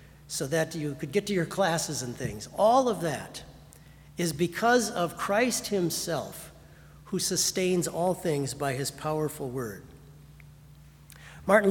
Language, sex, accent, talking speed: English, male, American, 140 wpm